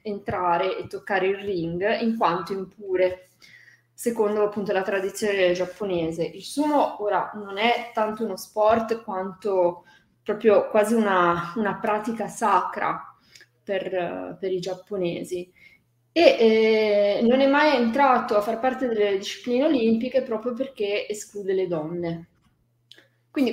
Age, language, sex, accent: 20-39, Italian, female, native